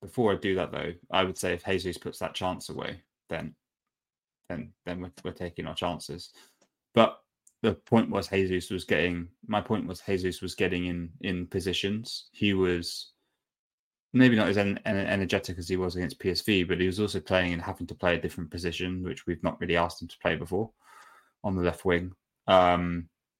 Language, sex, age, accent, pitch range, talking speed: English, male, 20-39, British, 90-100 Hz, 195 wpm